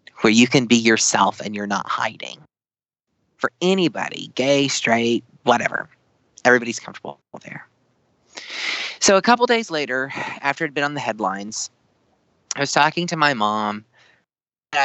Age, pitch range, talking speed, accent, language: 30-49, 115-140 Hz, 145 wpm, American, English